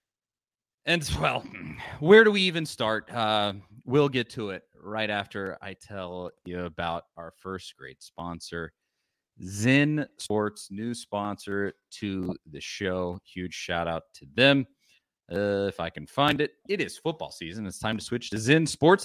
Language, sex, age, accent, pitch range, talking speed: English, male, 30-49, American, 100-140 Hz, 160 wpm